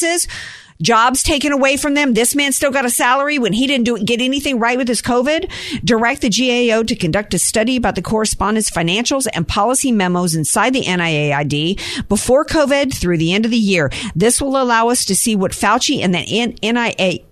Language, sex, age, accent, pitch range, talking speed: English, female, 50-69, American, 180-245 Hz, 200 wpm